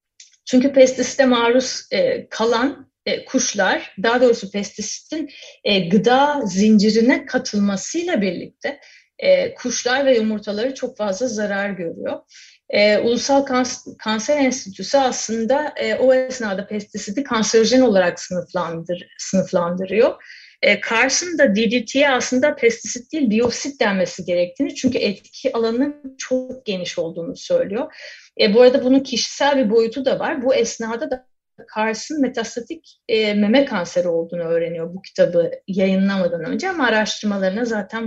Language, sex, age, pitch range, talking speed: Turkish, female, 30-49, 205-265 Hz, 125 wpm